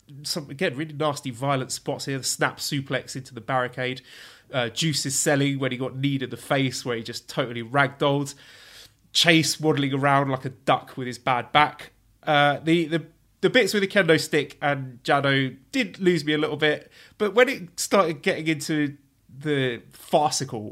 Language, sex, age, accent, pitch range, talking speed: English, male, 30-49, British, 125-150 Hz, 180 wpm